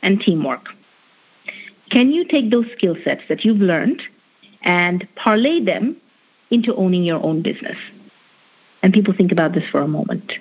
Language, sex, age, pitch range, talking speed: English, female, 50-69, 180-245 Hz, 155 wpm